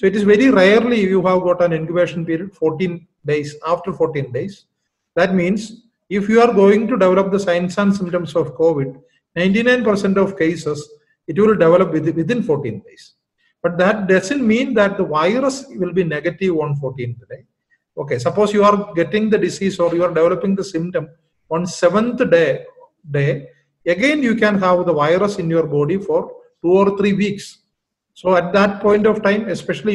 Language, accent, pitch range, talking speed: English, Indian, 170-205 Hz, 180 wpm